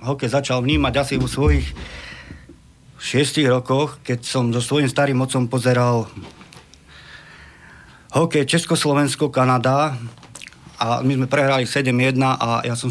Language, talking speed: Slovak, 120 wpm